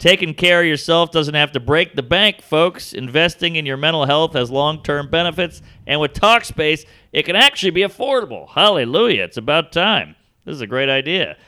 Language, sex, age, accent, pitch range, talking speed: English, male, 40-59, American, 140-185 Hz, 190 wpm